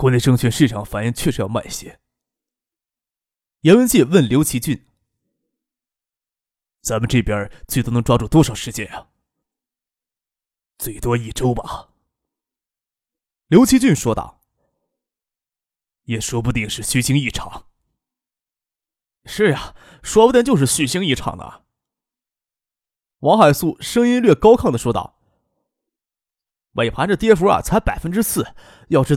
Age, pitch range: 20-39, 120-180 Hz